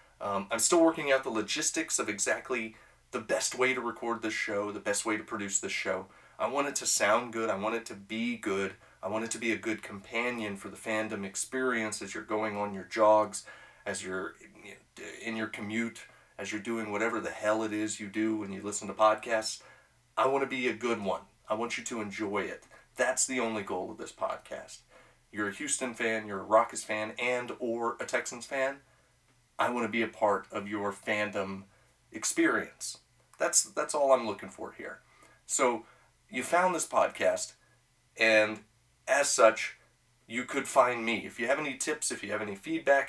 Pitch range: 105-125 Hz